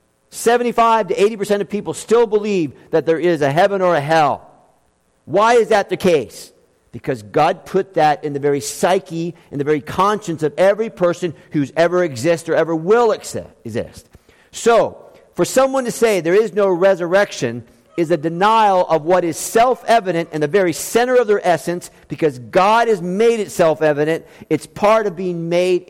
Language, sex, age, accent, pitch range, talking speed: English, male, 50-69, American, 150-210 Hz, 175 wpm